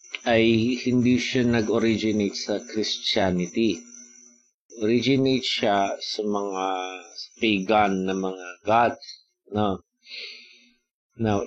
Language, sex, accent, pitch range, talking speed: Filipino, male, native, 100-125 Hz, 90 wpm